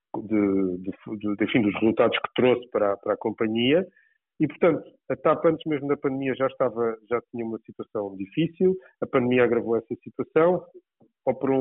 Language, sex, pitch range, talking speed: Portuguese, male, 105-135 Hz, 170 wpm